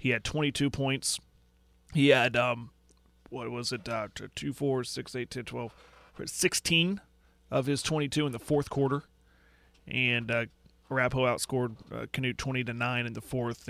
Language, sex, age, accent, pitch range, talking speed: English, male, 30-49, American, 115-140 Hz, 160 wpm